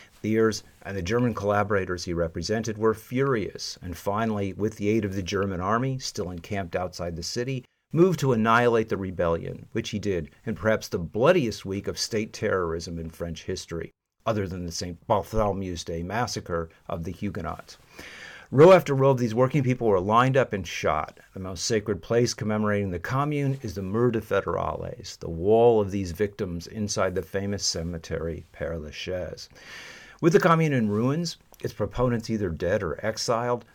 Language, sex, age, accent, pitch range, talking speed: English, male, 50-69, American, 95-120 Hz, 175 wpm